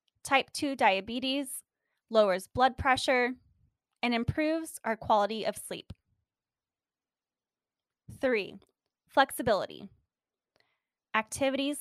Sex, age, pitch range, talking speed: female, 10-29, 220-270 Hz, 75 wpm